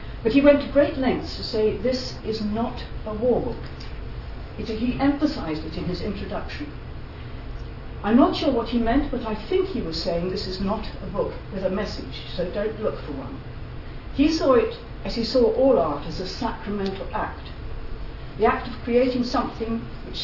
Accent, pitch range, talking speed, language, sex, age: British, 190-250 Hz, 185 wpm, English, female, 60-79